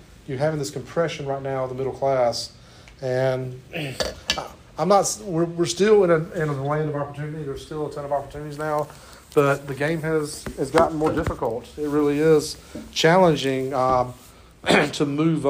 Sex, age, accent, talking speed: male, 40-59, American, 175 wpm